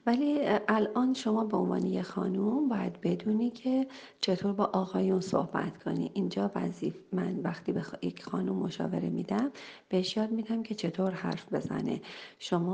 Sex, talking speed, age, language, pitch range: female, 150 wpm, 40-59, Persian, 185-235 Hz